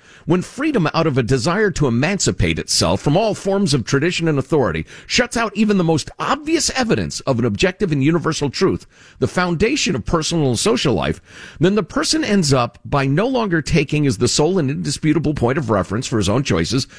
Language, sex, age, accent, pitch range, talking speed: English, male, 50-69, American, 110-175 Hz, 200 wpm